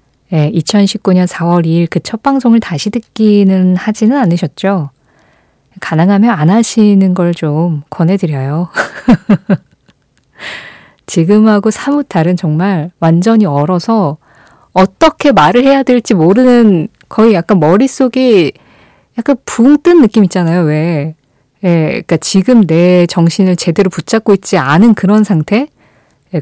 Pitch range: 165-215 Hz